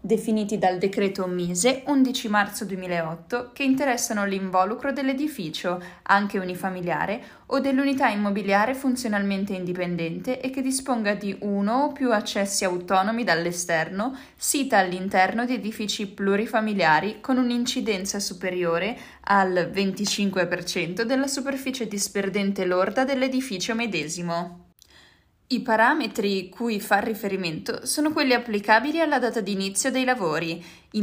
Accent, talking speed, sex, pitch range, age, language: native, 110 wpm, female, 185-245 Hz, 10-29, Italian